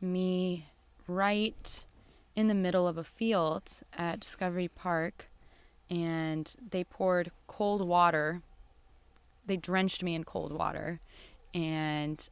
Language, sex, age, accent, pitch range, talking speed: English, female, 20-39, American, 155-185 Hz, 110 wpm